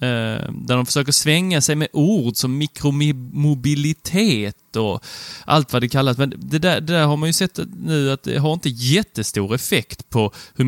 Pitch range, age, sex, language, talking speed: 105-140 Hz, 30-49, male, Swedish, 180 wpm